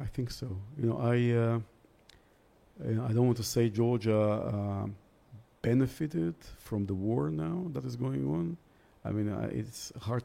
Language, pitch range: English, 100-120 Hz